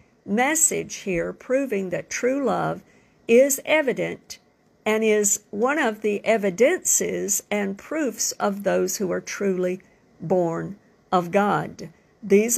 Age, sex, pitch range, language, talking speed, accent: 50-69, female, 190-240 Hz, English, 120 wpm, American